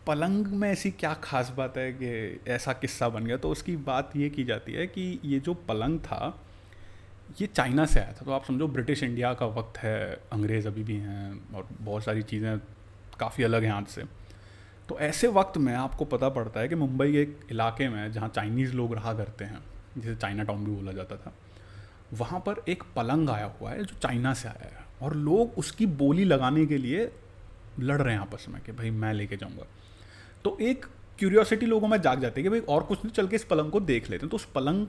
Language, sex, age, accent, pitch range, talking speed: Hindi, male, 30-49, native, 105-160 Hz, 225 wpm